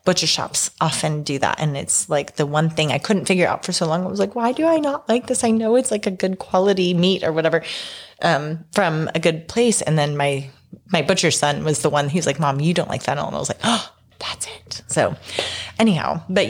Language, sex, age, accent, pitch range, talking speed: English, female, 30-49, American, 155-195 Hz, 245 wpm